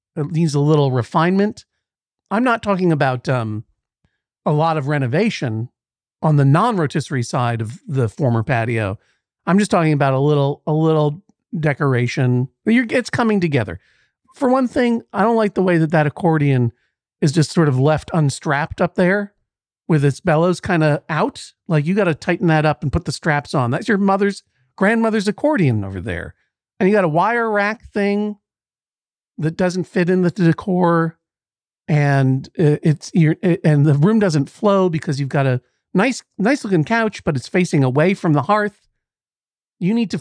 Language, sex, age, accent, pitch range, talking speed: English, male, 50-69, American, 140-190 Hz, 180 wpm